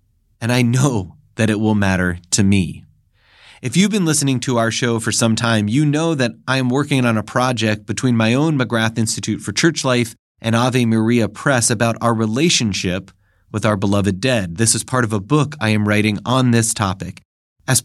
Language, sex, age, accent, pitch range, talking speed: English, male, 30-49, American, 105-130 Hz, 200 wpm